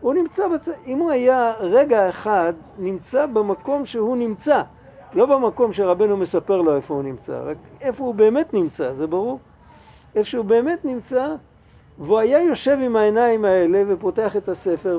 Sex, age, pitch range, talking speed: male, 50-69, 170-255 Hz, 155 wpm